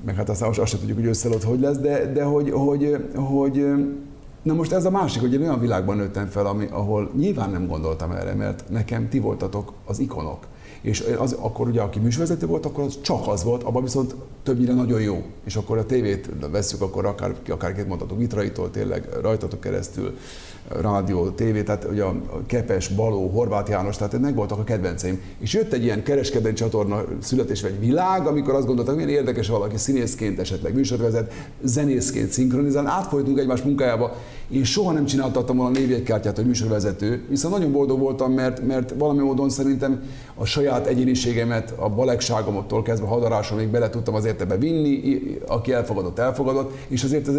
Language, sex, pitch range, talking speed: Hungarian, male, 105-135 Hz, 175 wpm